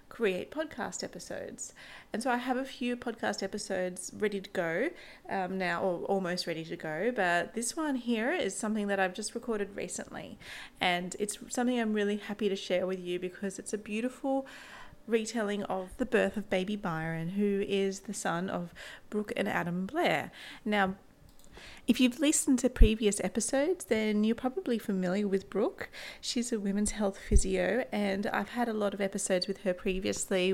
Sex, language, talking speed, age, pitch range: female, English, 175 wpm, 30-49, 185-230 Hz